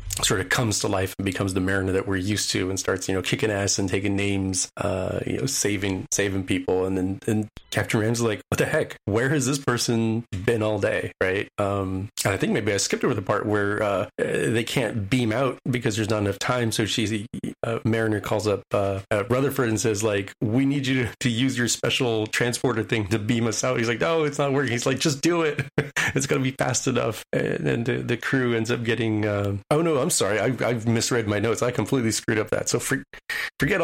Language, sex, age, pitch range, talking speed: English, male, 30-49, 100-125 Hz, 235 wpm